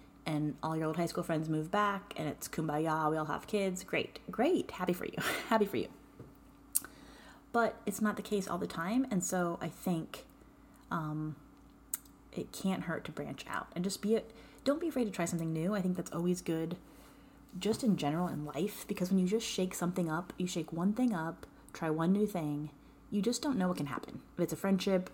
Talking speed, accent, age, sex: 215 wpm, American, 30-49, female